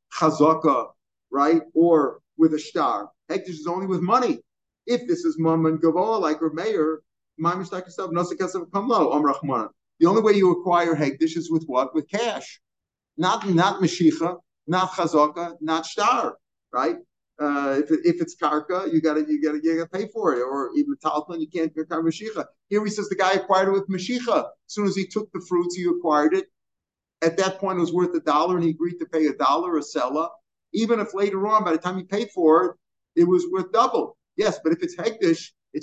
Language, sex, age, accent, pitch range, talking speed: English, male, 50-69, American, 160-195 Hz, 195 wpm